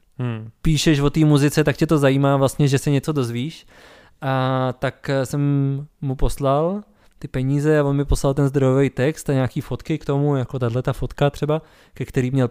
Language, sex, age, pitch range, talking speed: Czech, male, 20-39, 125-145 Hz, 190 wpm